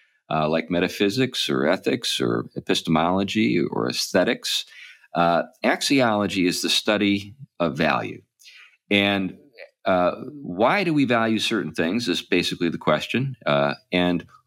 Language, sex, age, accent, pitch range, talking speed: English, male, 50-69, American, 80-105 Hz, 125 wpm